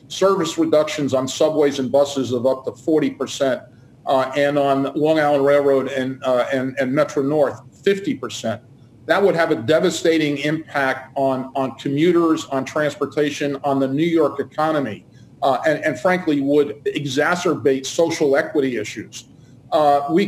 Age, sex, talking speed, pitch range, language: 50-69, male, 145 wpm, 135-155 Hz, English